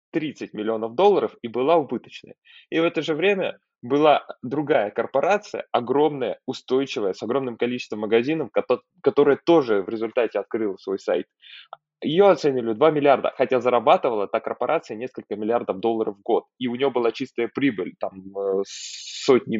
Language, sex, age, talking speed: Russian, male, 20-39, 145 wpm